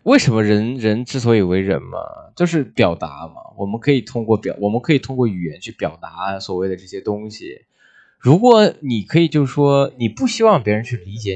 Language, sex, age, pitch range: Chinese, male, 20-39, 100-160 Hz